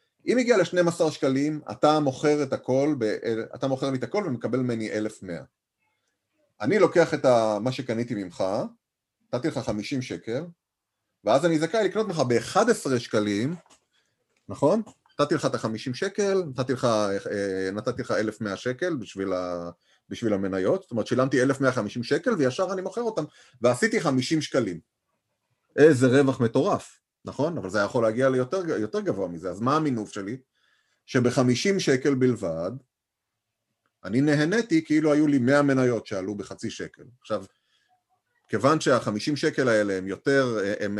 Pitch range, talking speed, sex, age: 110-150 Hz, 135 wpm, male, 30-49